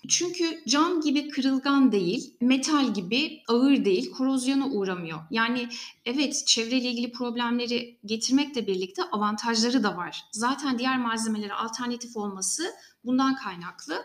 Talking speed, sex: 120 wpm, female